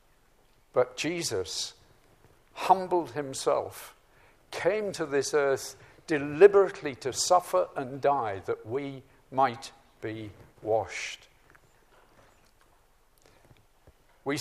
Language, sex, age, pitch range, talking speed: English, male, 50-69, 140-195 Hz, 80 wpm